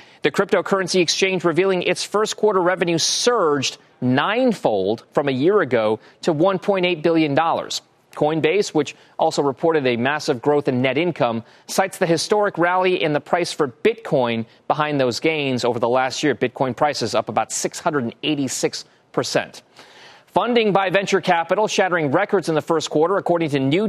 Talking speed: 155 wpm